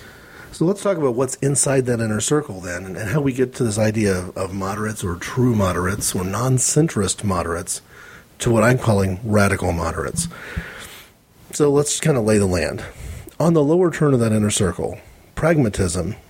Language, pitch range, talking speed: English, 100-135 Hz, 175 wpm